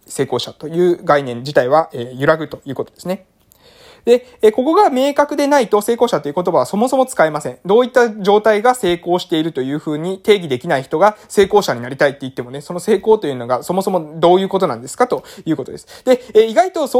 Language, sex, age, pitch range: Japanese, male, 20-39, 140-230 Hz